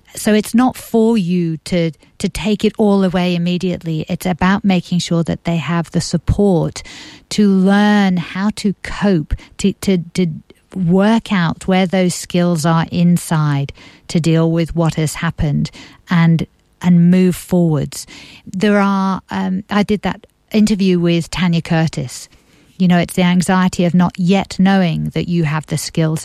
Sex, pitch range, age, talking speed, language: female, 160-190 Hz, 50-69, 160 wpm, English